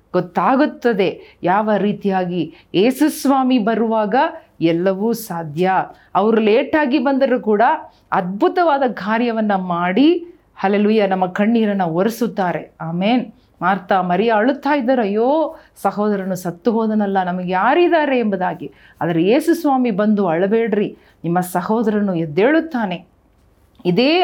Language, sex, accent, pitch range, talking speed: Kannada, female, native, 190-250 Hz, 90 wpm